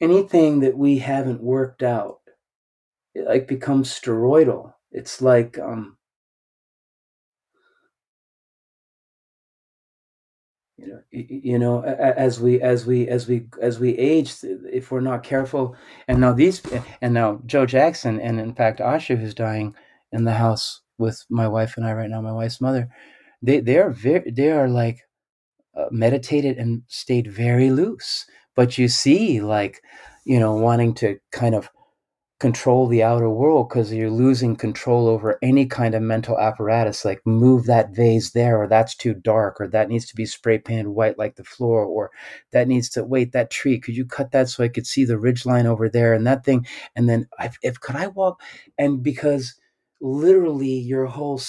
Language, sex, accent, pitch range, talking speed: English, male, American, 115-130 Hz, 170 wpm